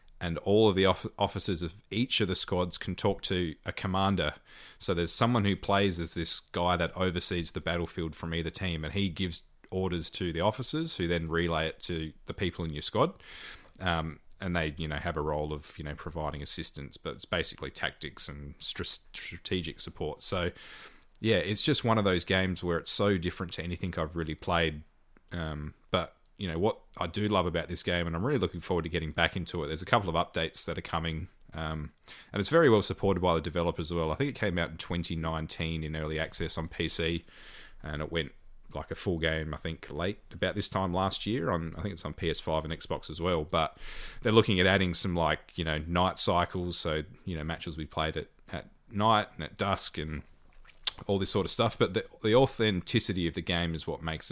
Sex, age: male, 30-49